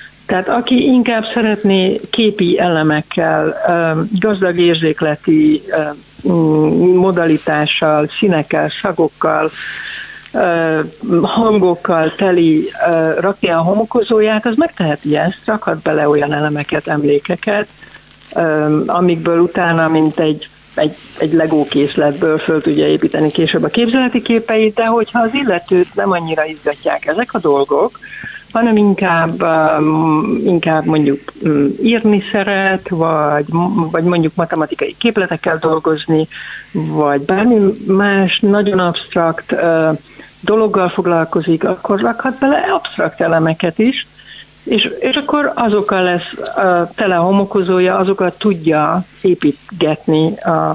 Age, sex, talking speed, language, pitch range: 60-79, female, 105 wpm, Hungarian, 155-205 Hz